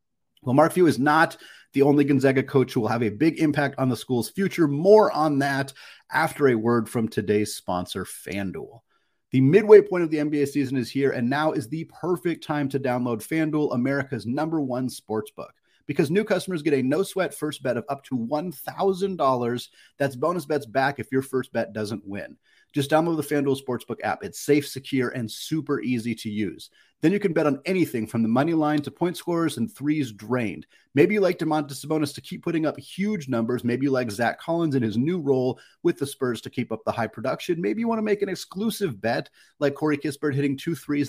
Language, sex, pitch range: English, male, 120-155 Hz